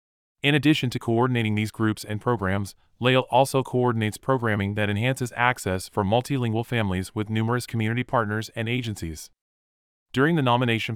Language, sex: English, male